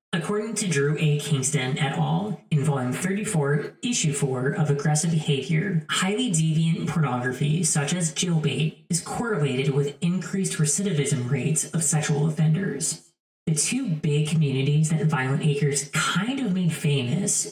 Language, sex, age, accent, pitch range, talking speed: English, female, 30-49, American, 145-175 Hz, 140 wpm